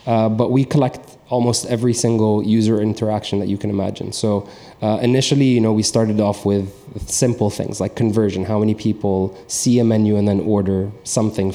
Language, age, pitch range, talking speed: English, 20-39, 110-125 Hz, 185 wpm